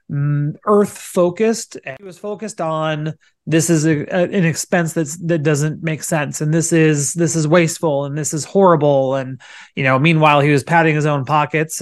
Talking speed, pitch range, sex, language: 185 wpm, 150-185 Hz, male, English